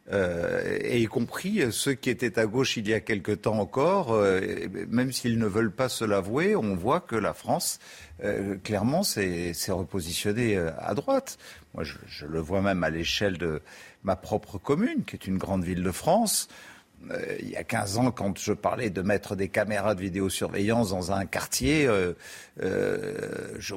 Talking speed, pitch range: 185 wpm, 95-125 Hz